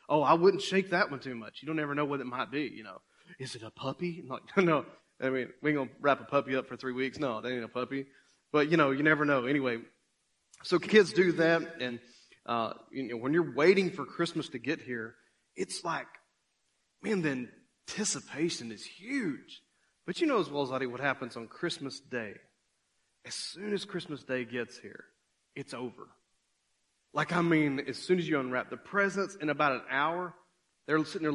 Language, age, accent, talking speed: English, 30-49, American, 210 wpm